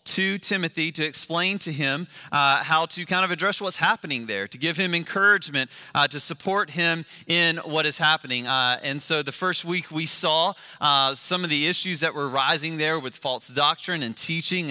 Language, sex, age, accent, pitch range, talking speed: English, male, 30-49, American, 135-165 Hz, 200 wpm